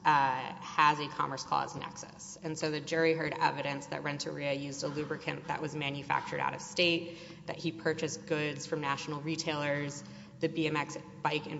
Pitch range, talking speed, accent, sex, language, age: 145-170 Hz, 175 wpm, American, female, English, 20-39